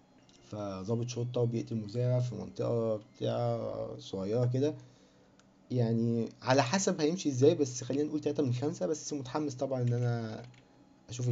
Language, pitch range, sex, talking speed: Arabic, 110-130 Hz, male, 140 wpm